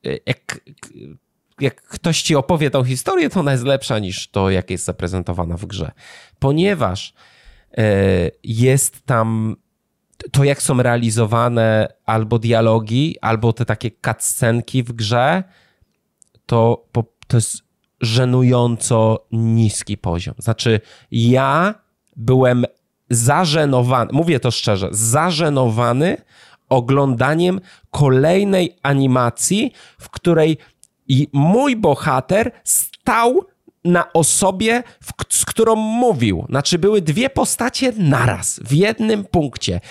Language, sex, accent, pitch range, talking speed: Polish, male, native, 115-170 Hz, 105 wpm